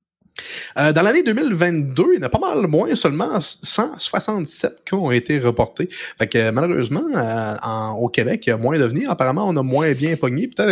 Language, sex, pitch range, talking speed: French, male, 120-165 Hz, 215 wpm